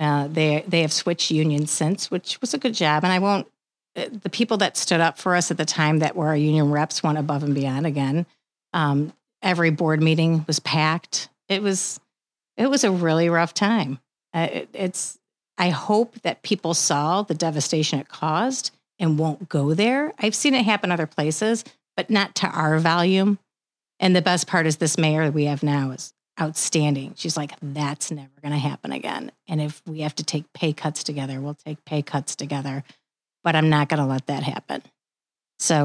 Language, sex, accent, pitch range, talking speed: English, female, American, 150-180 Hz, 200 wpm